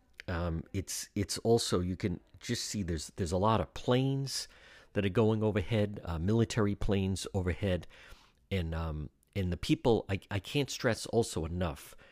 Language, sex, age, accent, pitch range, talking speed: English, male, 50-69, American, 85-110 Hz, 165 wpm